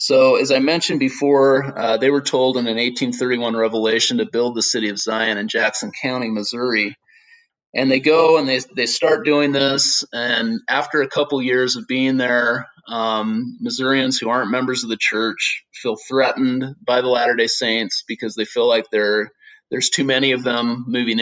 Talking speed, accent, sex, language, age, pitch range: 180 wpm, American, male, English, 30-49, 110-135 Hz